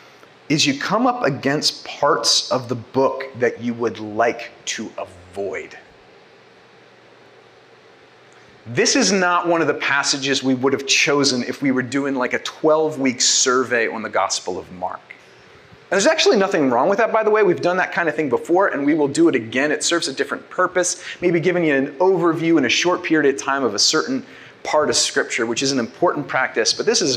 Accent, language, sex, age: American, English, male, 30-49